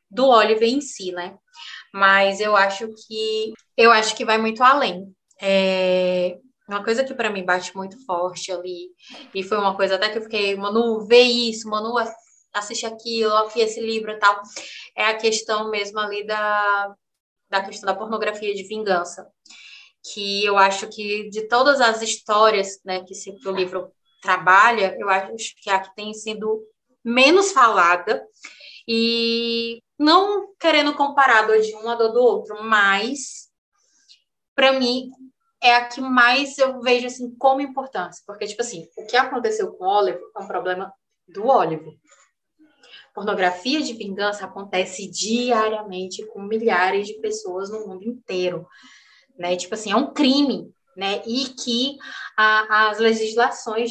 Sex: female